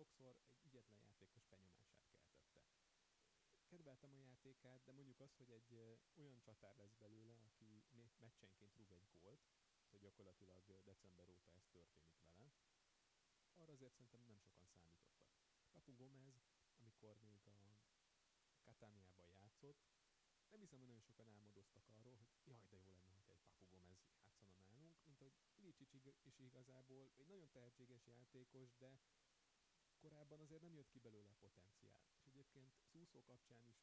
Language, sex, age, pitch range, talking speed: Hungarian, male, 30-49, 100-130 Hz, 145 wpm